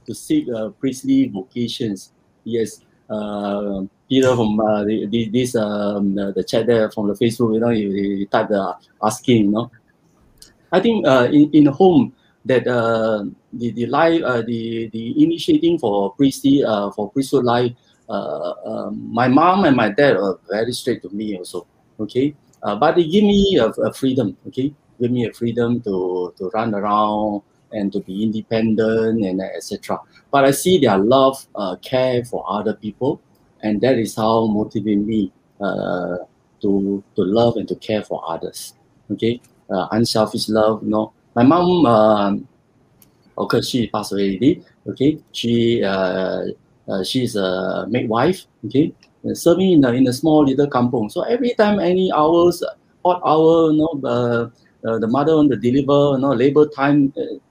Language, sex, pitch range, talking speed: English, male, 105-140 Hz, 175 wpm